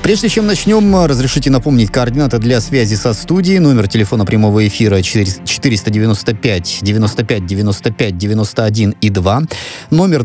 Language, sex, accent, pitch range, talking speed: Russian, male, native, 95-135 Hz, 125 wpm